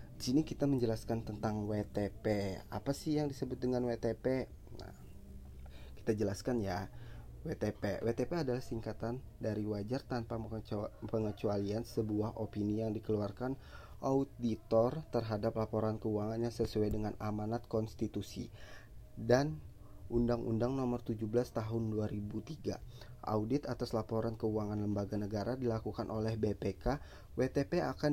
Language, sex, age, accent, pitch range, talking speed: Indonesian, male, 20-39, native, 105-120 Hz, 115 wpm